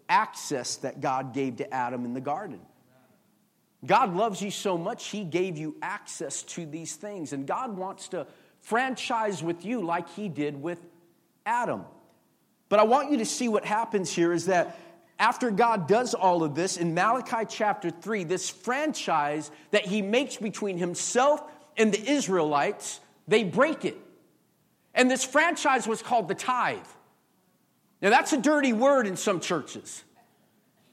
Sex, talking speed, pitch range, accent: male, 160 wpm, 175-240 Hz, American